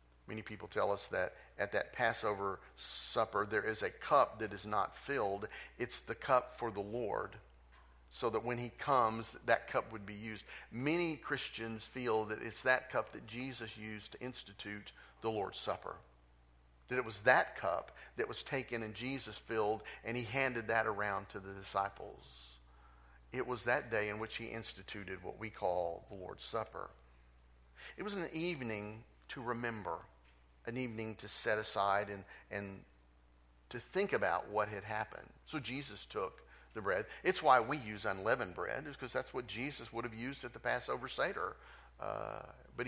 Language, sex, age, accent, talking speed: English, male, 50-69, American, 175 wpm